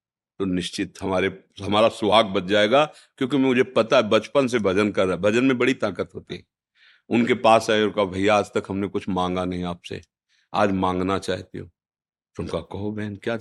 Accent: native